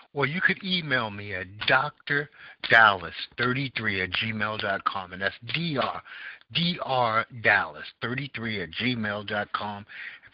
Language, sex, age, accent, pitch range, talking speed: English, male, 60-79, American, 105-135 Hz, 85 wpm